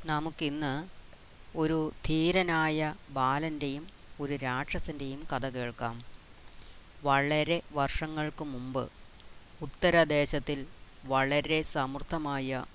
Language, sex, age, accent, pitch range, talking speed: Malayalam, female, 30-49, native, 130-155 Hz, 65 wpm